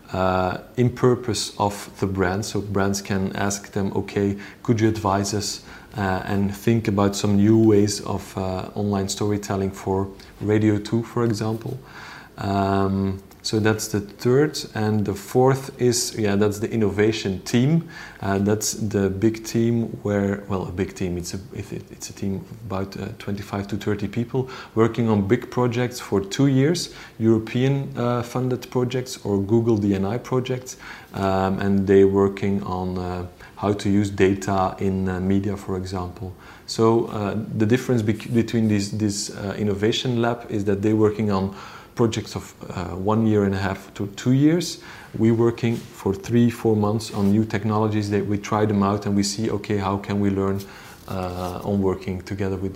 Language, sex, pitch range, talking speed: English, male, 100-115 Hz, 175 wpm